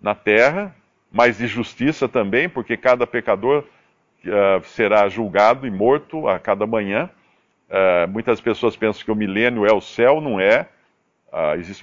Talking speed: 140 wpm